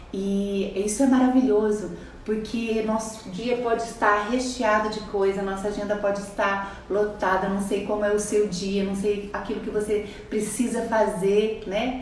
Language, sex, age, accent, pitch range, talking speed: Portuguese, female, 30-49, Brazilian, 195-225 Hz, 160 wpm